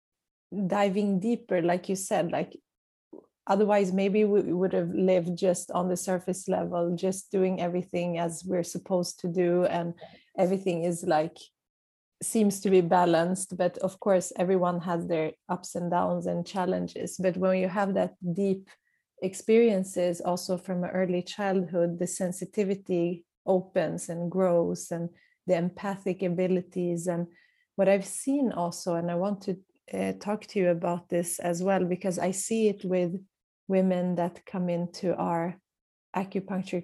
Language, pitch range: English, 175-195 Hz